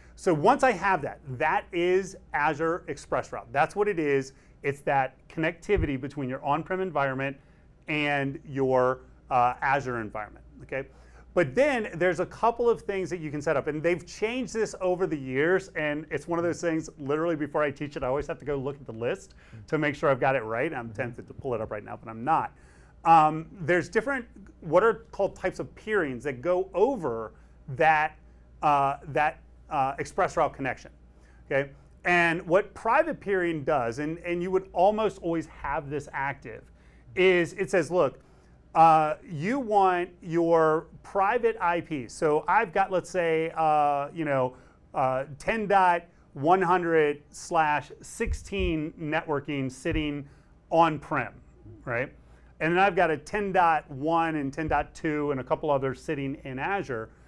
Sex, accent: male, American